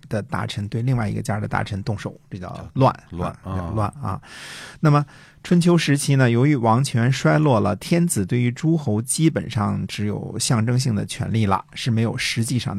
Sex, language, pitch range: male, Chinese, 105-135 Hz